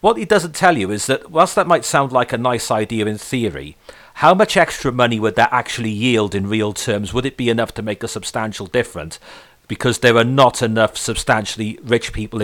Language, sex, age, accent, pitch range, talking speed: English, male, 40-59, British, 105-125 Hz, 215 wpm